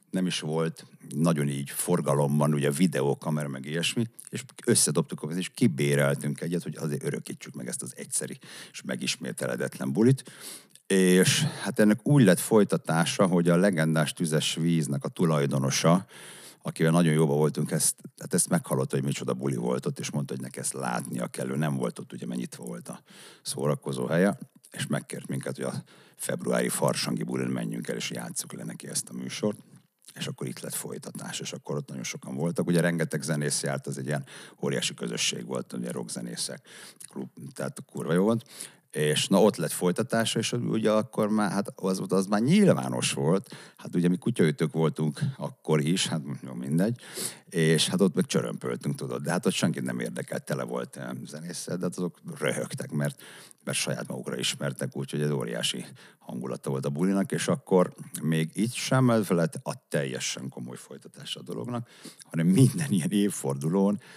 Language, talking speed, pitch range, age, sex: Hungarian, 175 wpm, 70-95 Hz, 60-79, male